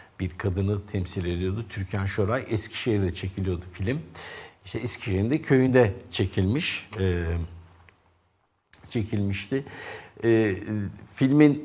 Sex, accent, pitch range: male, native, 100-135 Hz